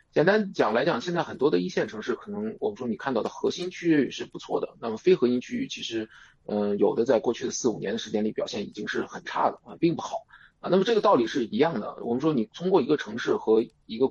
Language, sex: Chinese, male